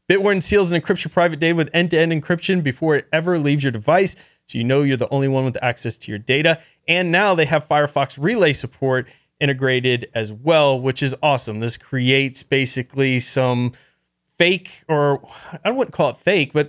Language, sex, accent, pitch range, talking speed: English, male, American, 135-165 Hz, 185 wpm